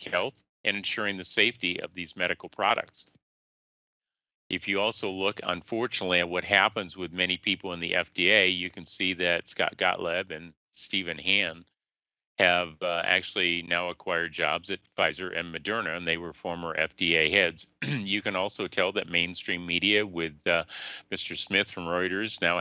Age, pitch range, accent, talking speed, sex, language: 40-59, 80-95 Hz, American, 165 wpm, male, English